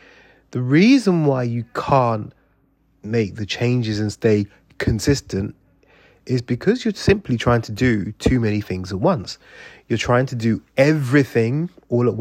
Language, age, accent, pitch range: English, 30-49, British, 110-135 Hz